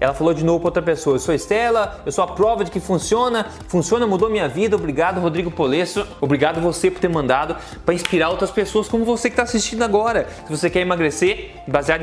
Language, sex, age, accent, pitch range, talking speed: Portuguese, male, 20-39, Brazilian, 145-200 Hz, 225 wpm